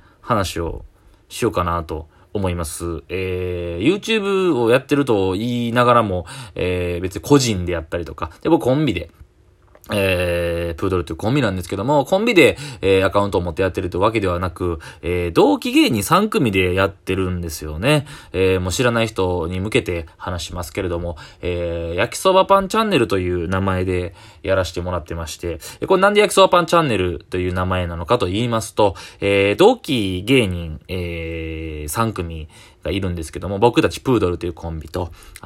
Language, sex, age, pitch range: Japanese, male, 20-39, 85-120 Hz